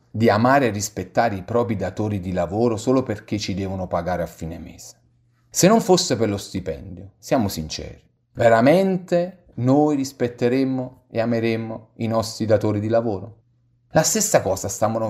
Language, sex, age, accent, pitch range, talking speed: Italian, male, 40-59, native, 95-130 Hz, 155 wpm